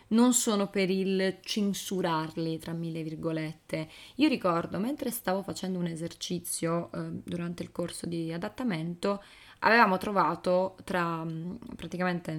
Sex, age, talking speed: female, 20-39, 115 wpm